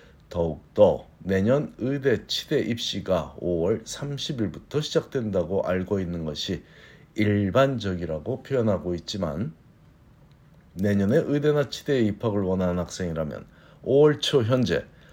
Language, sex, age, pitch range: Korean, male, 50-69, 95-130 Hz